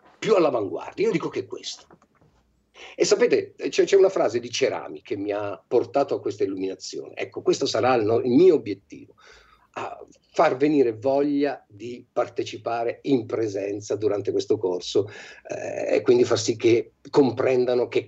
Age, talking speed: 50-69, 160 wpm